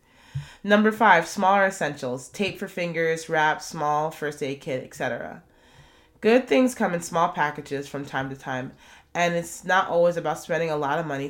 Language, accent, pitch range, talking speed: English, American, 145-175 Hz, 175 wpm